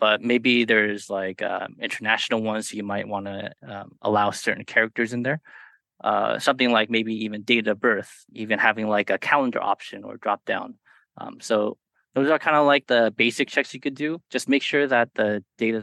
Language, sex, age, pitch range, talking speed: English, male, 20-39, 105-125 Hz, 200 wpm